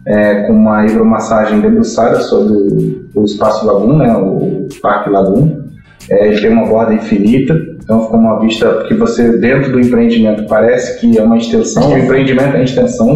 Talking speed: 170 wpm